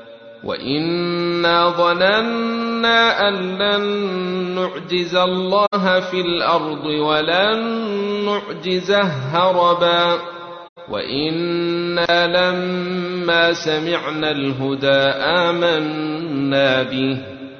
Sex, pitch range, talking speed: male, 140-180 Hz, 60 wpm